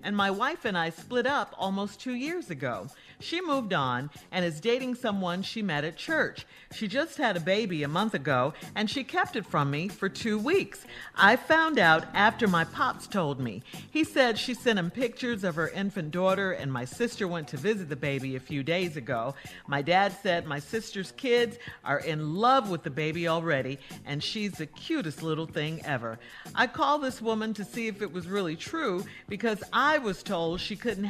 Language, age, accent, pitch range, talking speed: English, 50-69, American, 150-230 Hz, 205 wpm